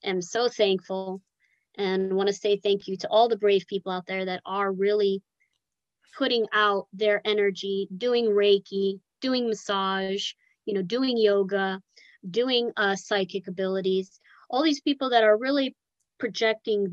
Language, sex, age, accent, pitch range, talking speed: English, female, 30-49, American, 185-225 Hz, 150 wpm